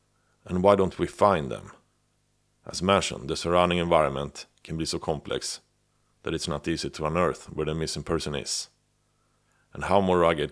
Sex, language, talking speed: male, English, 170 wpm